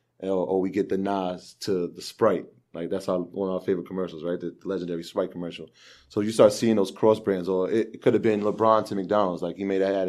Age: 30-49